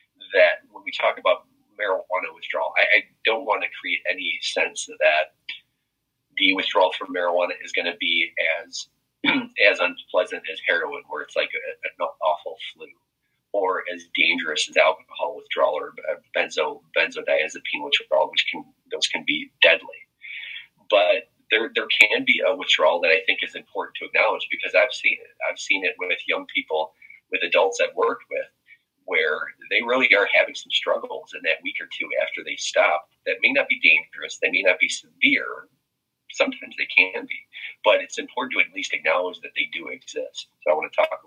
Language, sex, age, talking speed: English, male, 30-49, 185 wpm